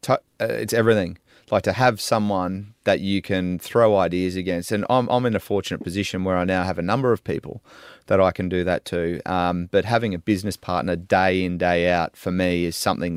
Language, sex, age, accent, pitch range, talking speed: English, male, 30-49, Australian, 90-105 Hz, 220 wpm